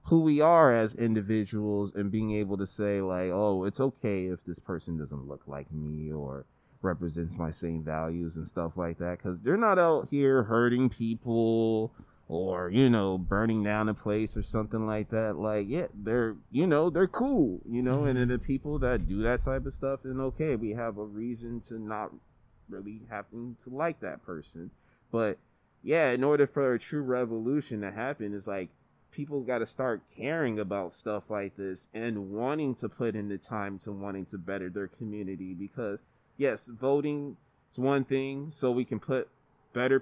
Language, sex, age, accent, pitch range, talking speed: English, male, 20-39, American, 105-135 Hz, 190 wpm